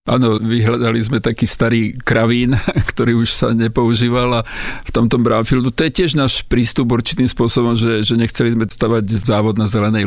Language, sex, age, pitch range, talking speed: Slovak, male, 50-69, 110-120 Hz, 175 wpm